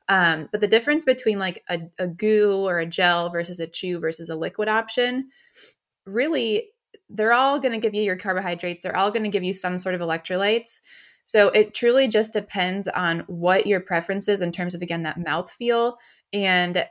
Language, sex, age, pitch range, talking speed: English, female, 20-39, 170-215 Hz, 195 wpm